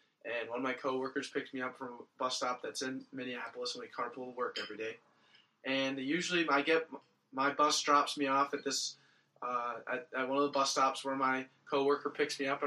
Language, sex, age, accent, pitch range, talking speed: English, male, 20-39, American, 130-150 Hz, 225 wpm